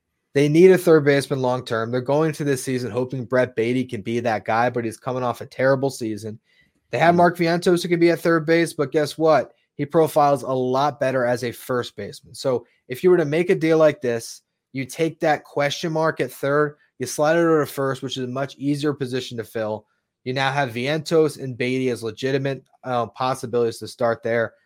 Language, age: English, 20-39